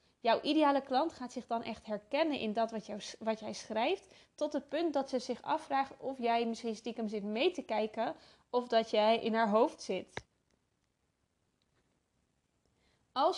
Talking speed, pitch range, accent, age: 165 wpm, 220-275 Hz, Dutch, 20-39